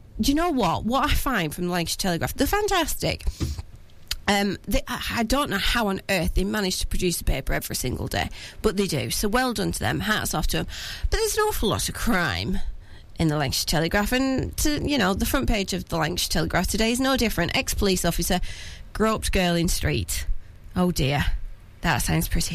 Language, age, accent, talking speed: English, 30-49, British, 210 wpm